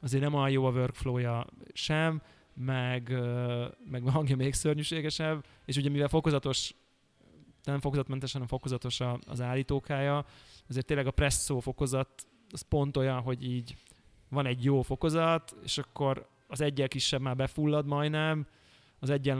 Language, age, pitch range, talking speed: Hungarian, 20-39, 125-145 Hz, 140 wpm